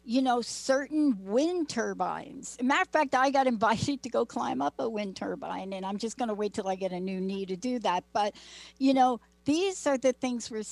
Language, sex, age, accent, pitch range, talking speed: English, female, 60-79, American, 195-250 Hz, 235 wpm